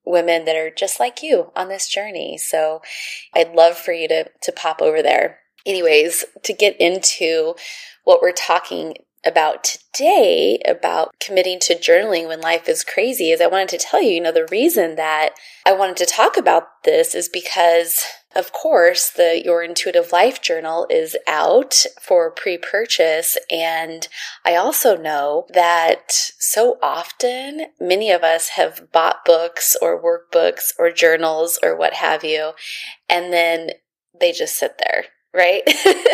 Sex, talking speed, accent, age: female, 155 wpm, American, 20-39